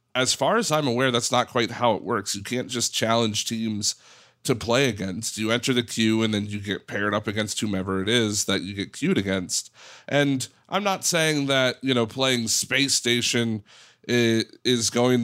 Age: 30-49